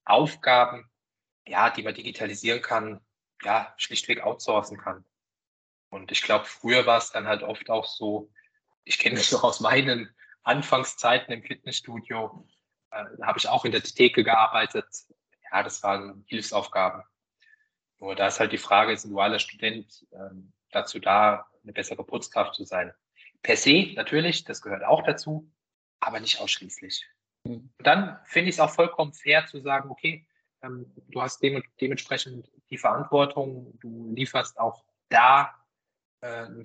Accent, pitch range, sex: German, 110-155 Hz, male